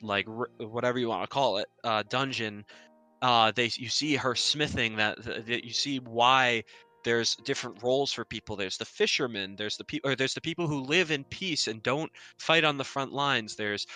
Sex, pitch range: male, 110-140 Hz